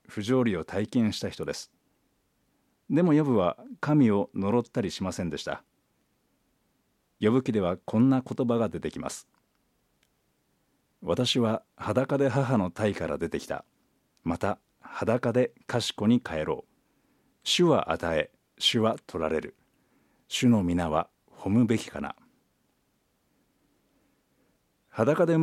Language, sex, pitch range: Japanese, male, 100-140 Hz